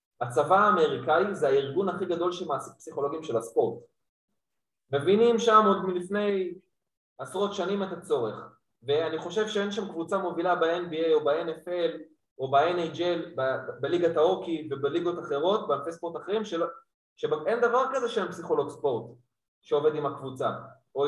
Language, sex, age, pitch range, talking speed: Hebrew, male, 20-39, 135-200 Hz, 135 wpm